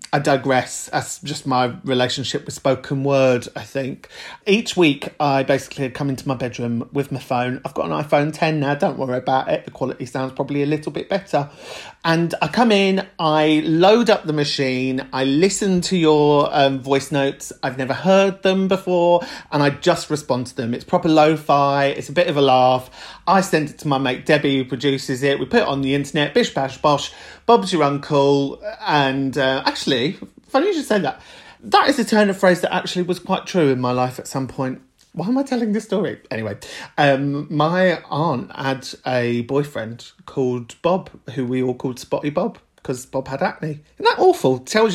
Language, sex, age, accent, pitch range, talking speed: English, male, 40-59, British, 135-175 Hz, 205 wpm